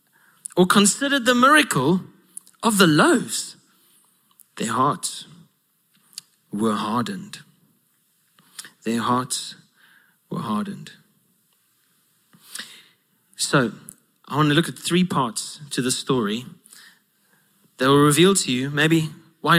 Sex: male